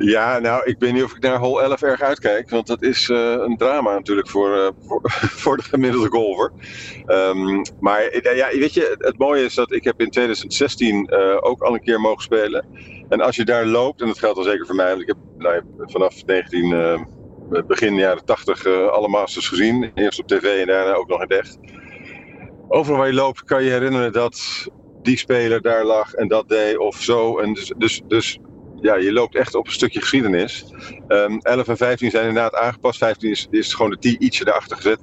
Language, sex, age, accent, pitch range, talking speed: Dutch, male, 50-69, Dutch, 100-135 Hz, 215 wpm